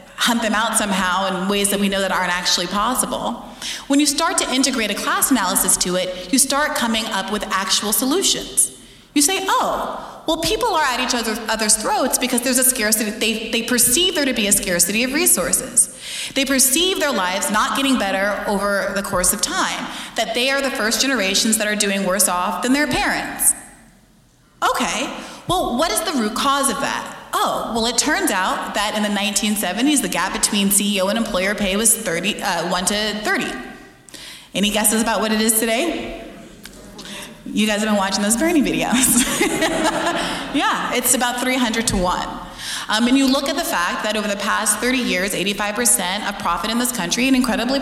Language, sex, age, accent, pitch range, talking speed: English, female, 30-49, American, 200-260 Hz, 190 wpm